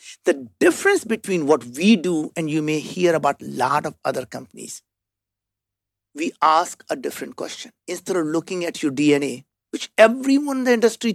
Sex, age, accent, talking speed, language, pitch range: male, 60-79, Indian, 170 wpm, English, 150-225 Hz